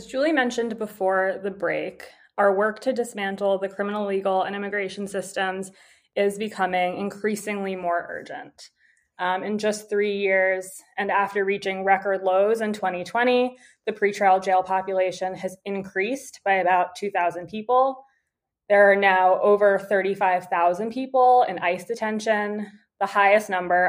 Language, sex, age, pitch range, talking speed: English, female, 20-39, 180-210 Hz, 140 wpm